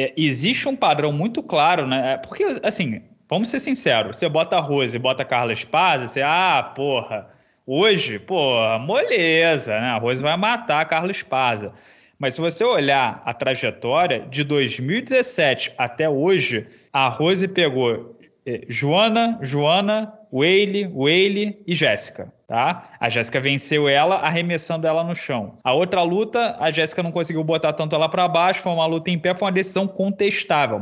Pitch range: 150-200 Hz